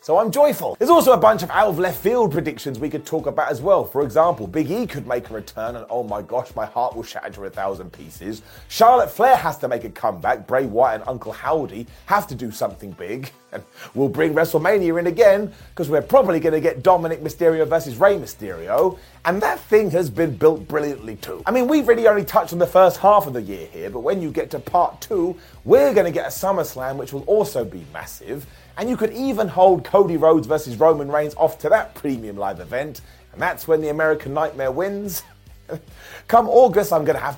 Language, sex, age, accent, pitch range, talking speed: English, male, 30-49, British, 135-205 Hz, 225 wpm